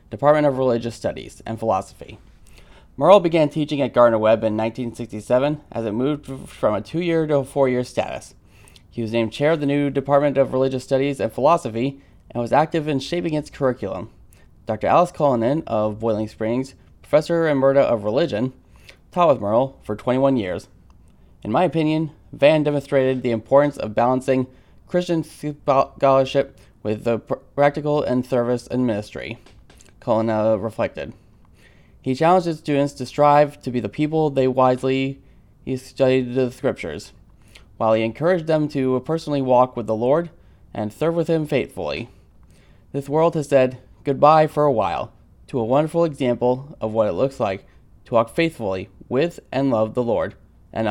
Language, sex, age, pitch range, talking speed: English, male, 20-39, 110-145 Hz, 160 wpm